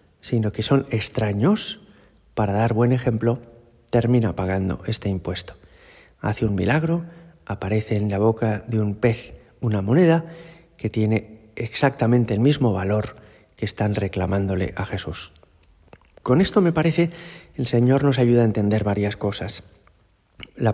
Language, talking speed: Spanish, 140 wpm